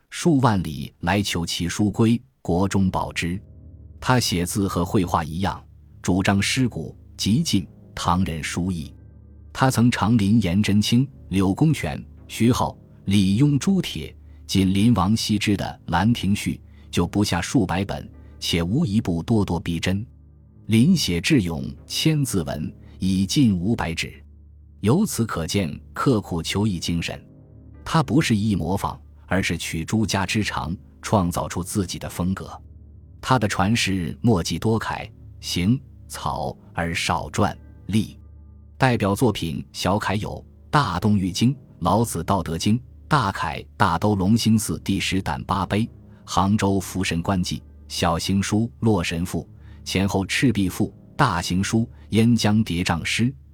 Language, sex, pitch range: Chinese, male, 85-110 Hz